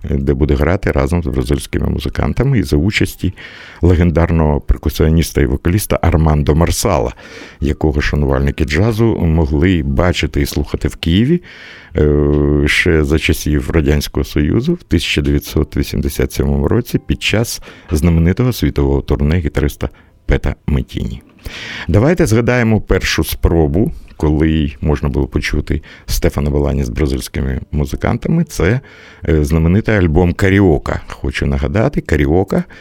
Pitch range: 75-95 Hz